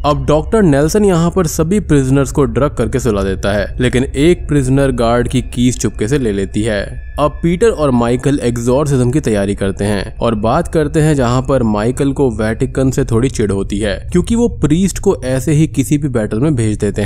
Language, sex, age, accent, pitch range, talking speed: Hindi, male, 20-39, native, 115-155 Hz, 205 wpm